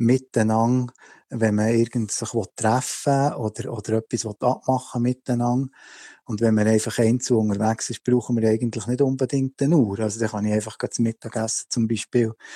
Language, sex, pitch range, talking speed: German, male, 115-130 Hz, 160 wpm